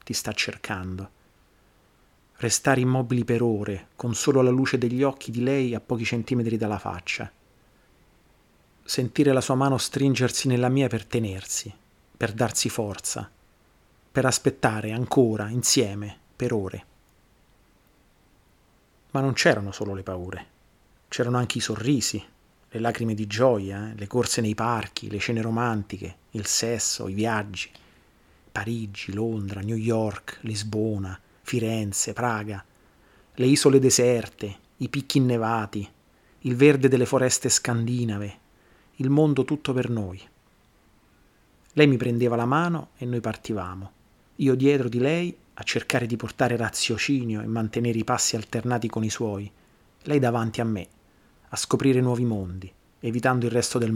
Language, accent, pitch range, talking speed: Italian, native, 100-125 Hz, 140 wpm